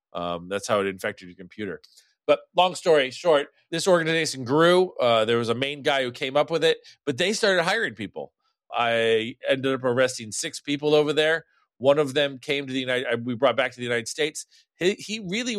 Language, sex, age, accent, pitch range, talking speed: English, male, 40-59, American, 120-165 Hz, 215 wpm